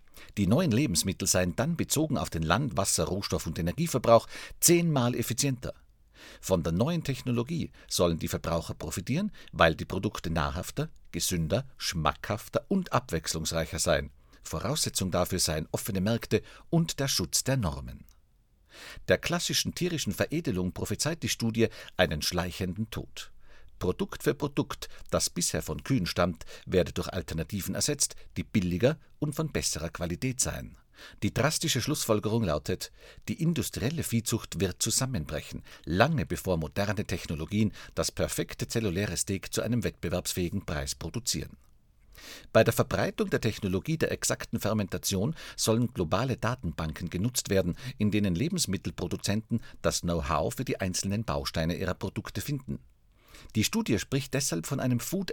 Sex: male